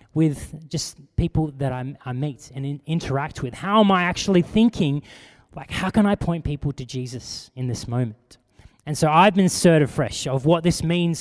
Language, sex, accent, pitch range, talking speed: English, male, Australian, 135-165 Hz, 185 wpm